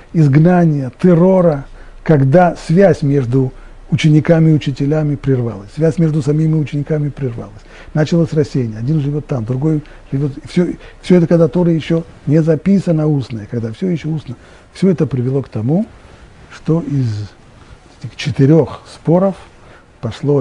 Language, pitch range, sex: Russian, 115-160 Hz, male